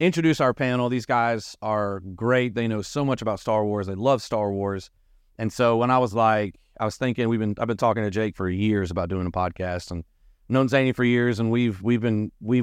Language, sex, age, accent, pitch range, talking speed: English, male, 30-49, American, 100-125 Hz, 240 wpm